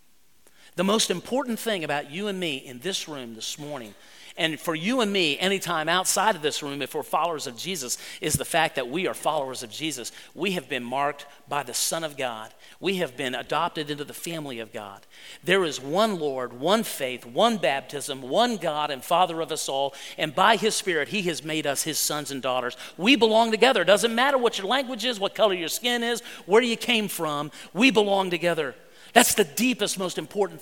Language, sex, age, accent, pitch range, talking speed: English, male, 40-59, American, 150-225 Hz, 215 wpm